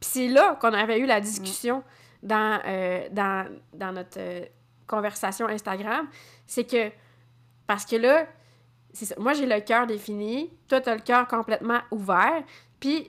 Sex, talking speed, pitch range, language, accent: female, 160 wpm, 220-275 Hz, French, Canadian